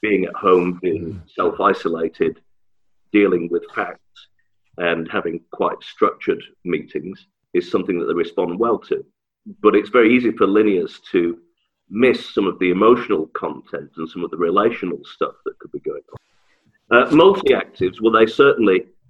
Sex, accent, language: male, British, English